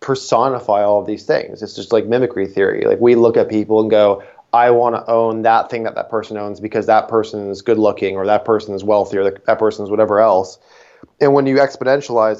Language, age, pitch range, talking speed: English, 20-39, 105-130 Hz, 225 wpm